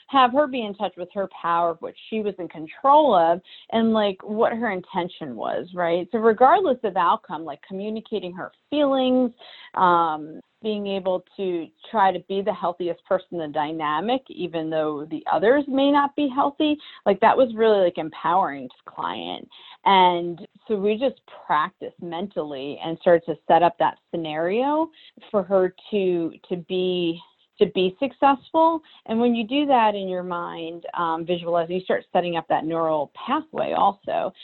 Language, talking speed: English, 170 wpm